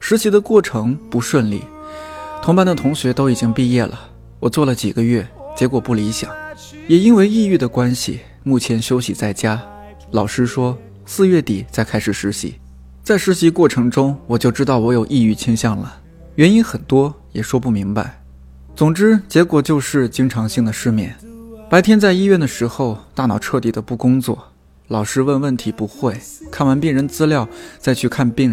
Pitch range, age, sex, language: 110-155 Hz, 20-39, male, Chinese